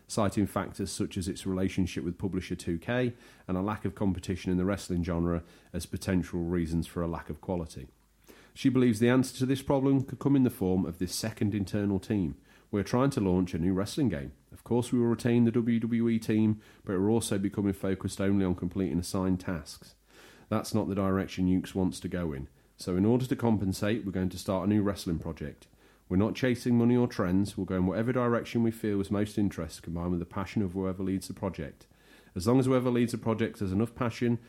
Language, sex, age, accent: English, male, 30-49, British